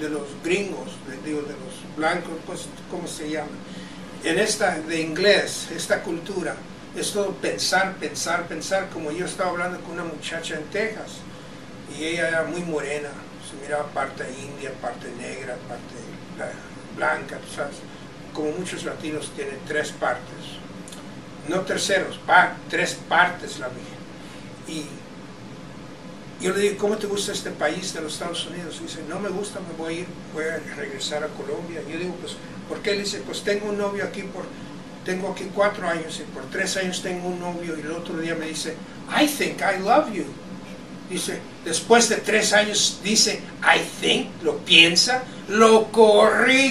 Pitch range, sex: 160-210 Hz, male